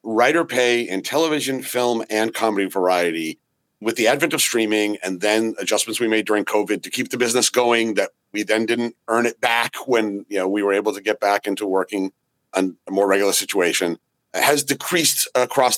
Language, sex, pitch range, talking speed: English, male, 105-130 Hz, 195 wpm